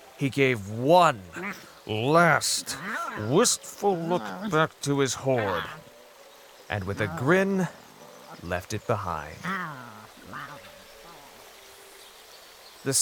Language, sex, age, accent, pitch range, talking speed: English, male, 30-49, American, 100-140 Hz, 85 wpm